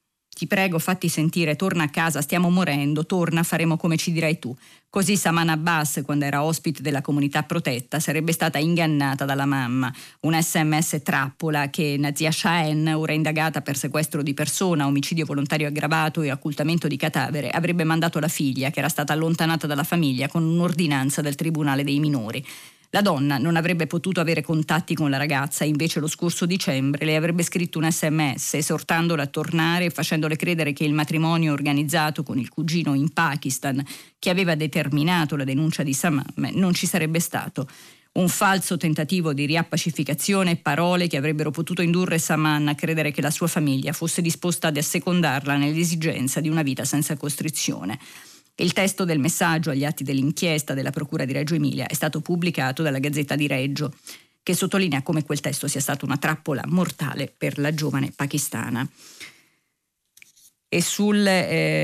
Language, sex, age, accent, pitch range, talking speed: Italian, female, 30-49, native, 145-165 Hz, 170 wpm